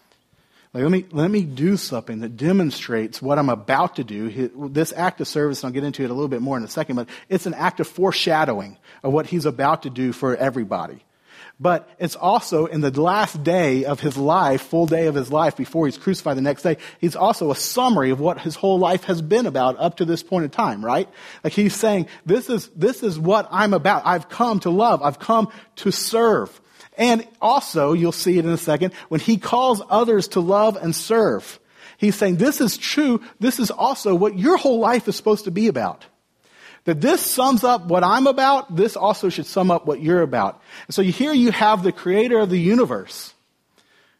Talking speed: 220 wpm